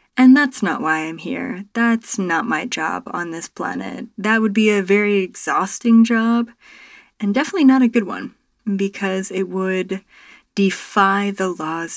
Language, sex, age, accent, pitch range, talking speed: English, female, 20-39, American, 175-230 Hz, 160 wpm